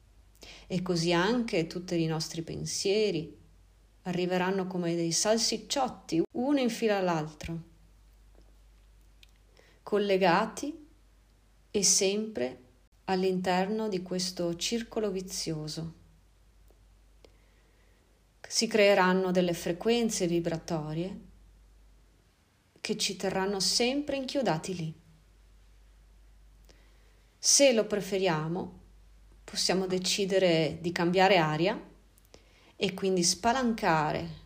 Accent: native